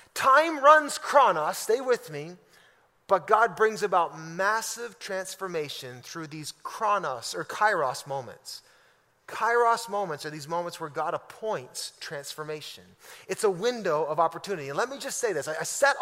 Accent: American